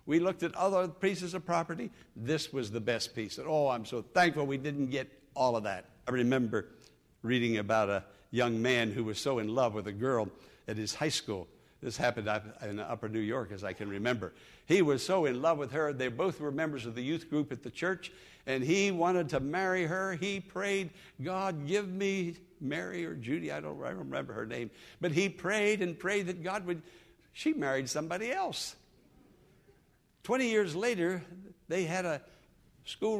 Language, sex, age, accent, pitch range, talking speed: English, male, 60-79, American, 125-180 Hz, 195 wpm